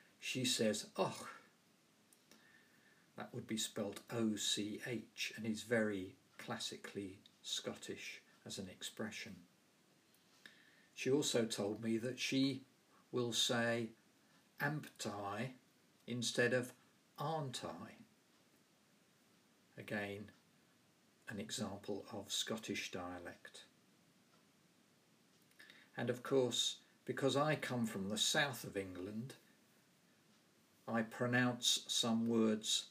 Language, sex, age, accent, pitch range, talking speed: English, male, 50-69, British, 105-120 Hz, 90 wpm